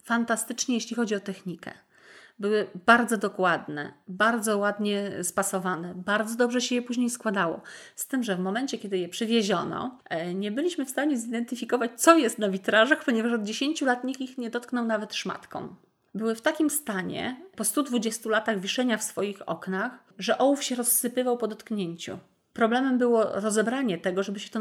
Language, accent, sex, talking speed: Polish, native, female, 165 wpm